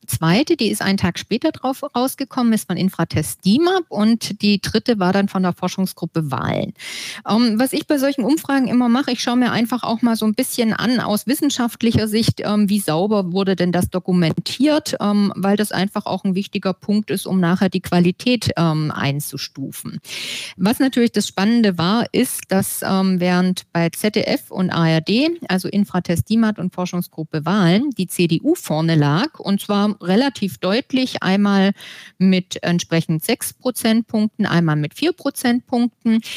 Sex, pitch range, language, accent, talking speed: female, 185-235 Hz, German, German, 155 wpm